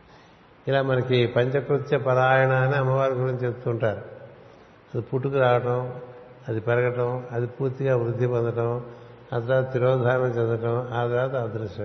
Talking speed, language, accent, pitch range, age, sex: 120 wpm, Telugu, native, 115-130 Hz, 60-79, male